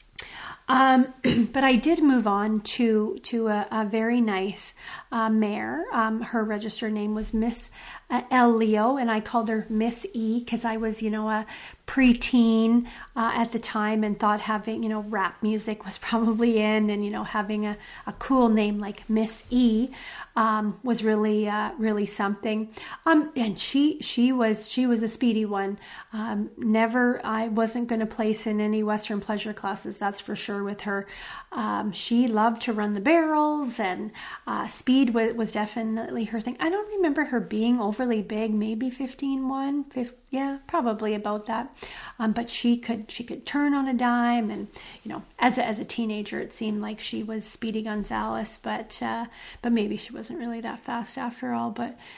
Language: English